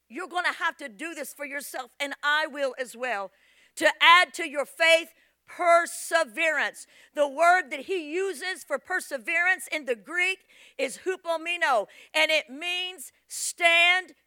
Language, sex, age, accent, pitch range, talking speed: English, female, 50-69, American, 275-345 Hz, 150 wpm